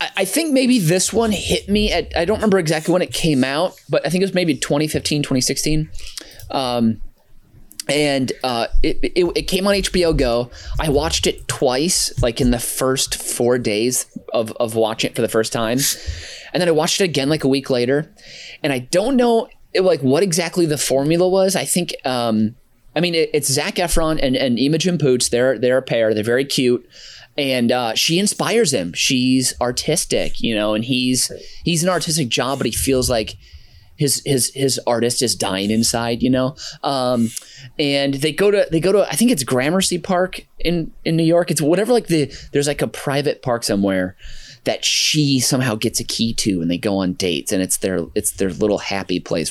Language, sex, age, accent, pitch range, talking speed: English, male, 20-39, American, 120-165 Hz, 200 wpm